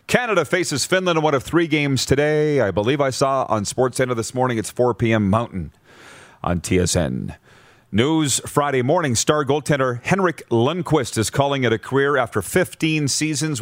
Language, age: English, 40-59